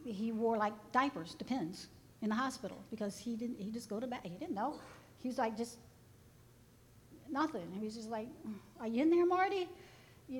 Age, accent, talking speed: 50-69, American, 200 wpm